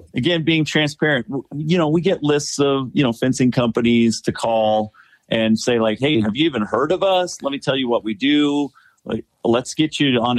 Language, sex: English, male